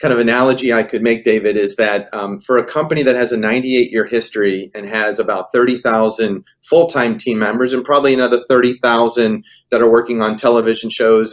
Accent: American